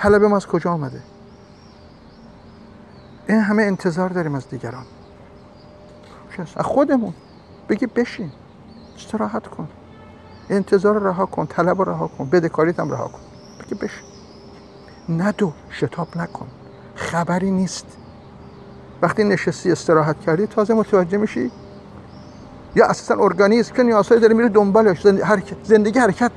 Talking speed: 125 wpm